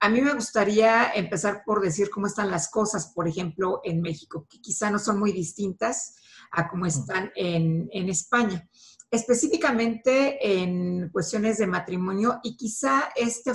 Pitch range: 185-235 Hz